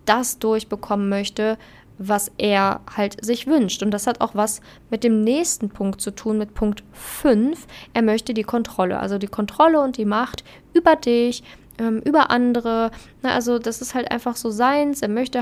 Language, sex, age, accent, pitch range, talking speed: German, female, 10-29, German, 210-245 Hz, 180 wpm